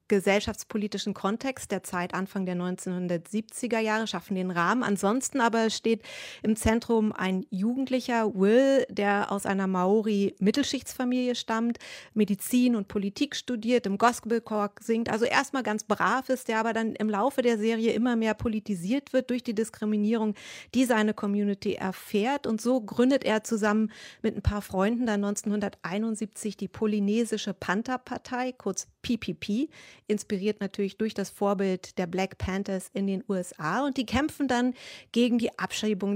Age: 30-49